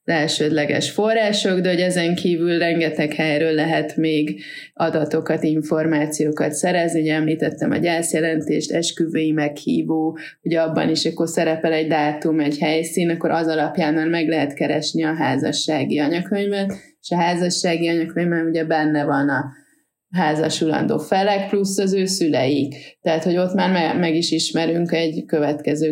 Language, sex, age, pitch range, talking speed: Hungarian, female, 20-39, 155-175 Hz, 140 wpm